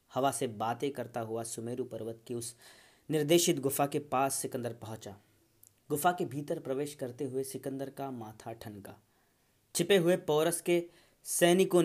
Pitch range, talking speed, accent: 120-160 Hz, 150 wpm, native